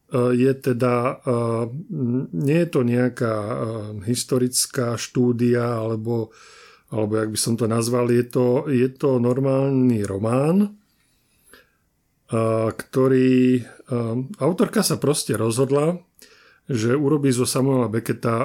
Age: 40-59